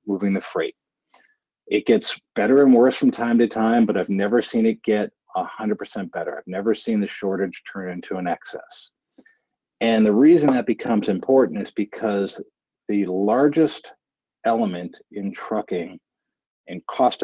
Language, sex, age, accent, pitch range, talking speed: English, male, 40-59, American, 100-140 Hz, 155 wpm